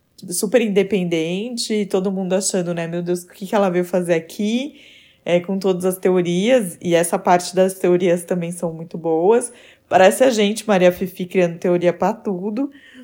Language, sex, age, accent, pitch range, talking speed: Portuguese, female, 20-39, Brazilian, 170-210 Hz, 175 wpm